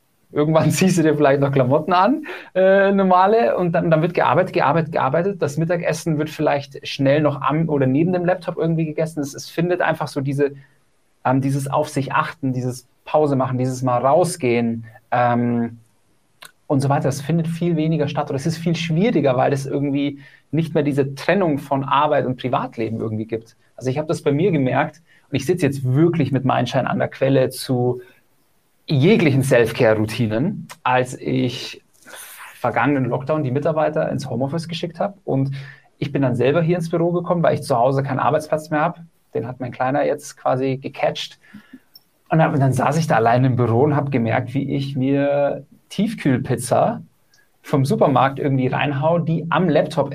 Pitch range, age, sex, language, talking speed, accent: 130-165 Hz, 30-49, male, German, 180 wpm, German